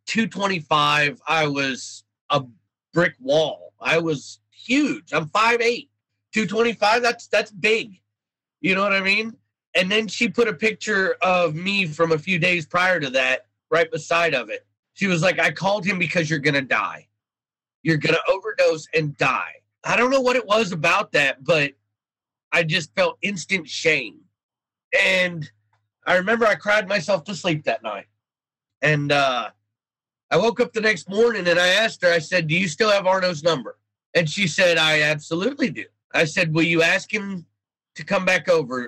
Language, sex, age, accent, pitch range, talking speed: English, male, 30-49, American, 145-200 Hz, 175 wpm